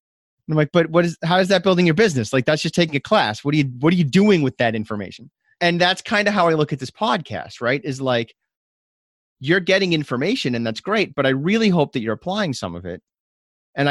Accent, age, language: American, 30-49, English